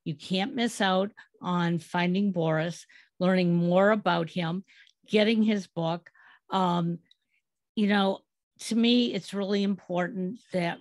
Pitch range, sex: 170-210 Hz, female